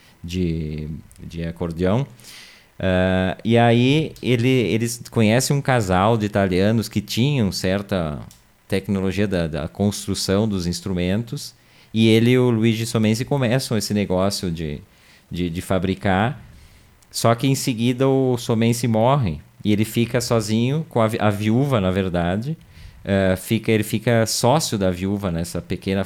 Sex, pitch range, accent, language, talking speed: male, 95-120 Hz, Brazilian, Portuguese, 145 wpm